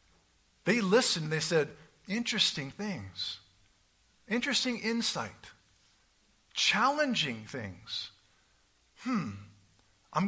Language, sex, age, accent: English, male, 50-69, American